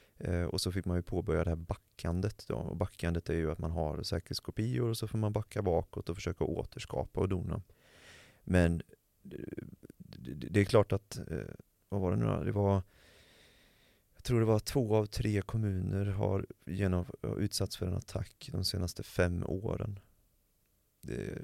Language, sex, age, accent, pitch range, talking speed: Swedish, male, 30-49, native, 90-105 Hz, 170 wpm